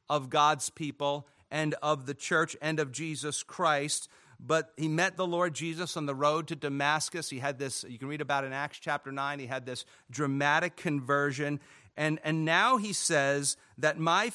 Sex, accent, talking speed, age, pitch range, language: male, American, 190 wpm, 40-59, 145-180 Hz, English